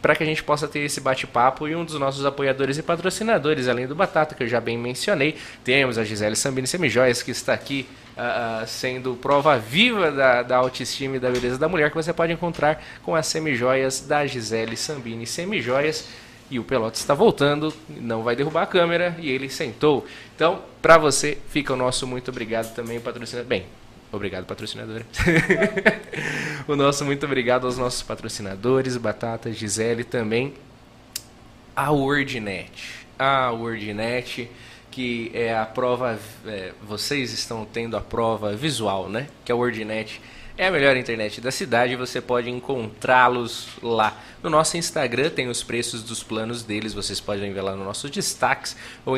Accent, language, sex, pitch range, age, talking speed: Brazilian, Portuguese, male, 115-145 Hz, 20-39, 165 wpm